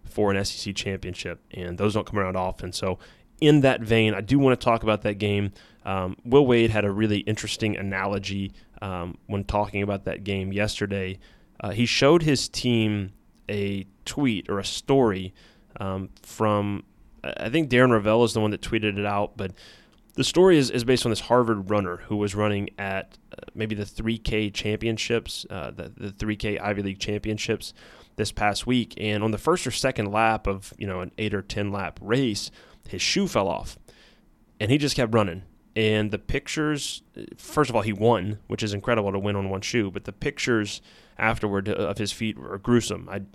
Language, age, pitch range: English, 20-39, 100-115 Hz